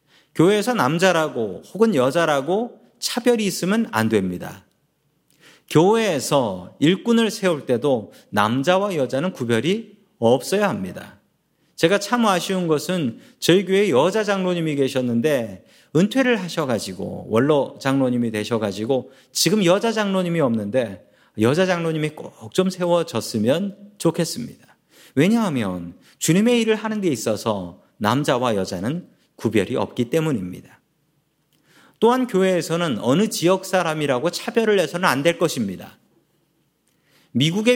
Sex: male